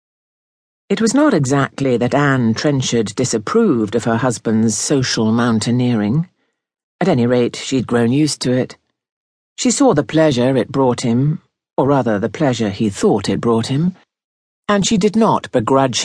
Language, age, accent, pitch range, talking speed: English, 50-69, British, 120-150 Hz, 155 wpm